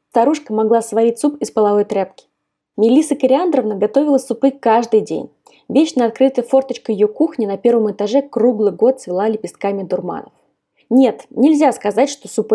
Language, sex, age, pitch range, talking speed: Russian, female, 20-39, 200-245 Hz, 150 wpm